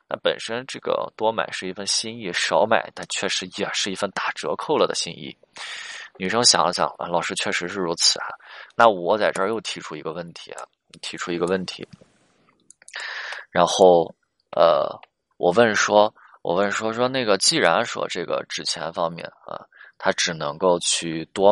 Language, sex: Chinese, male